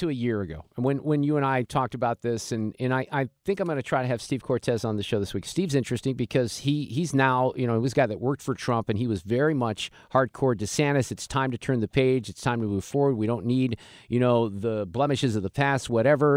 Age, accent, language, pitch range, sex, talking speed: 50-69, American, English, 120-150 Hz, male, 280 wpm